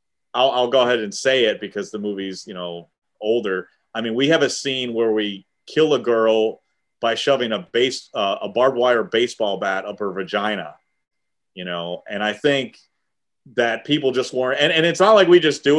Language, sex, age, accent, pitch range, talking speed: English, male, 30-49, American, 100-135 Hz, 205 wpm